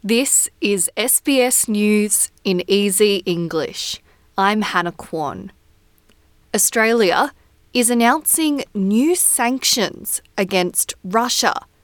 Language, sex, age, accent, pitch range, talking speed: English, female, 20-39, Australian, 200-255 Hz, 85 wpm